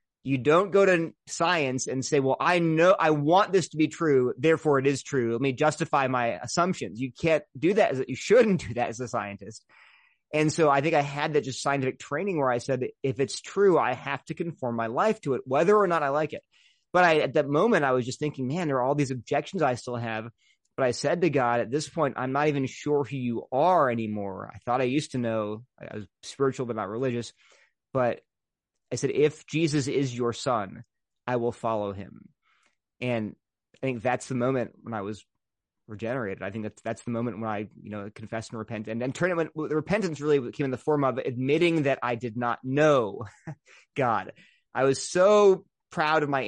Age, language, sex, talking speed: 30-49, English, male, 225 wpm